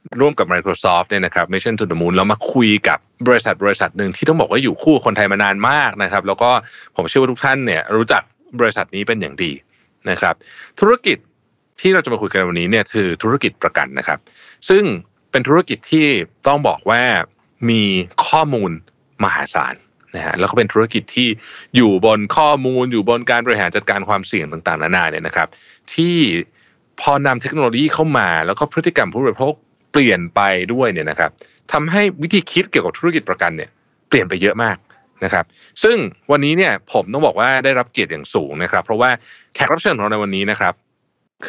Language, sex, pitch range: Thai, male, 105-145 Hz